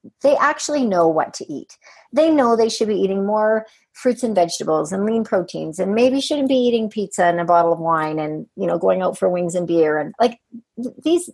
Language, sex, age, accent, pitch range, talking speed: English, female, 40-59, American, 190-245 Hz, 220 wpm